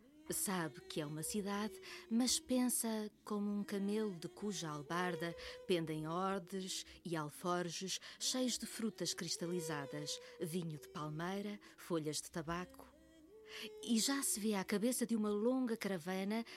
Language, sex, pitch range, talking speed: Portuguese, female, 165-215 Hz, 135 wpm